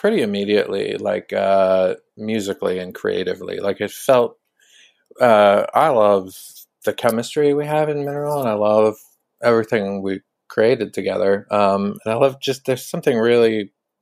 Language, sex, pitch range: English, male, 100-120 Hz